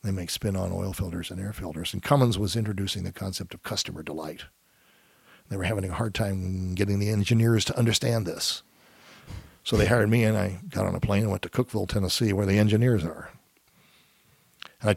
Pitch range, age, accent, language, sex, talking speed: 95-115 Hz, 60-79, American, English, male, 200 wpm